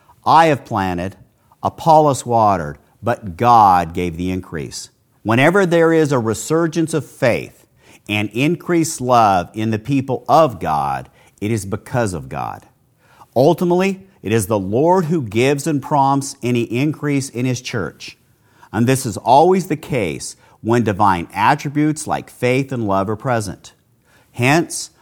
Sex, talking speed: male, 145 wpm